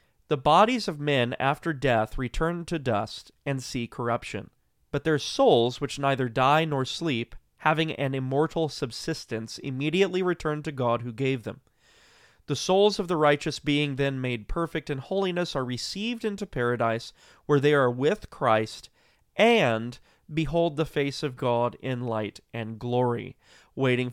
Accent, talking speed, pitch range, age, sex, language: American, 155 wpm, 120-150 Hz, 30-49, male, English